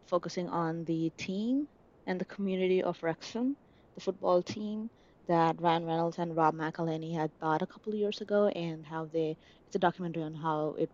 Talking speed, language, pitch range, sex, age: 180 wpm, English, 160-195 Hz, female, 20-39